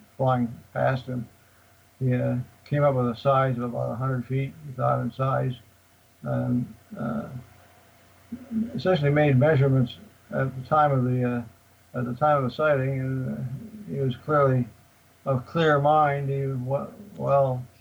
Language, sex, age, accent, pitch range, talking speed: English, male, 60-79, American, 120-140 Hz, 155 wpm